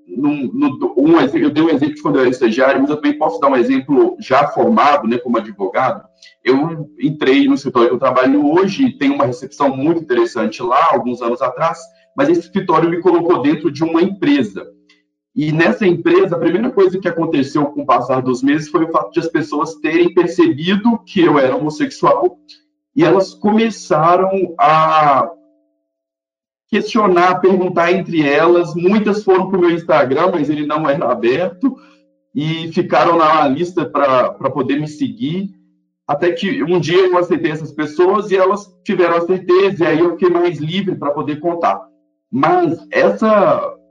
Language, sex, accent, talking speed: Portuguese, male, Brazilian, 170 wpm